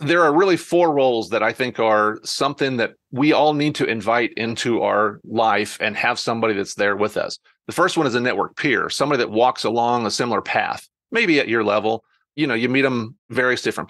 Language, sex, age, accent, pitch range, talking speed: English, male, 40-59, American, 115-150 Hz, 220 wpm